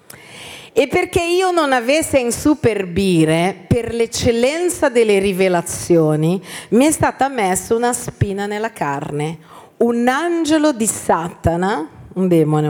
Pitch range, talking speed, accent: 175-275 Hz, 120 wpm, native